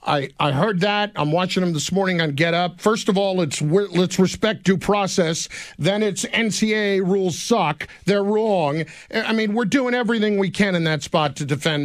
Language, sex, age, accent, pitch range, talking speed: English, male, 50-69, American, 155-215 Hz, 200 wpm